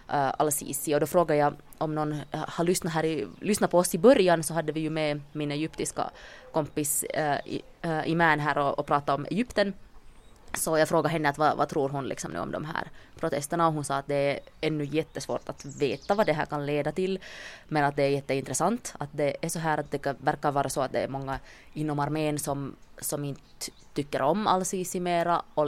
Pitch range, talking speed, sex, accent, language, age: 140-160 Hz, 215 wpm, female, Finnish, English, 20-39